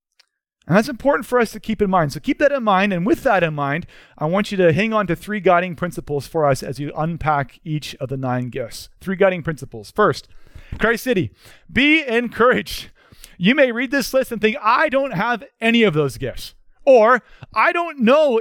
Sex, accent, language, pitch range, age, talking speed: male, American, English, 170-235 Hz, 30-49, 210 wpm